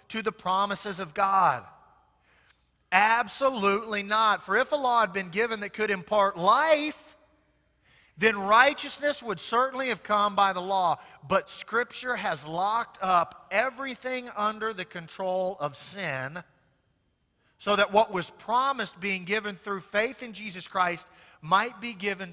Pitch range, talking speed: 155-215 Hz, 140 wpm